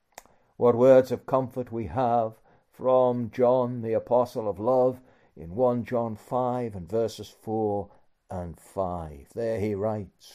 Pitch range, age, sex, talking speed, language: 105-140 Hz, 60-79, male, 140 wpm, English